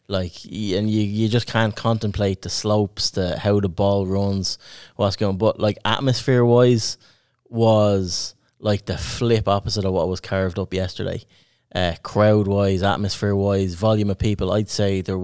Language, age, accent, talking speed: English, 20-39, Irish, 170 wpm